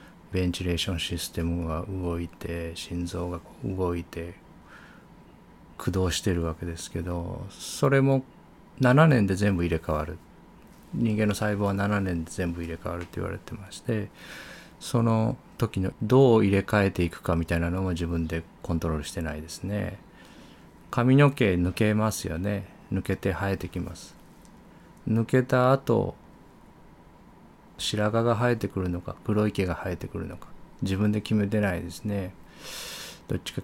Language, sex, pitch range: Japanese, male, 85-105 Hz